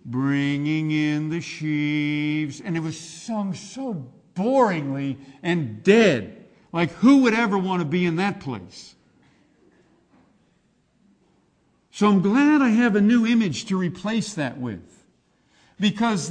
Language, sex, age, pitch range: English, male, 50-69, 155-210 Hz